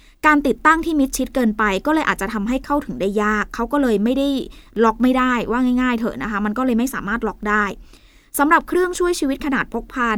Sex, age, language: female, 20-39, Thai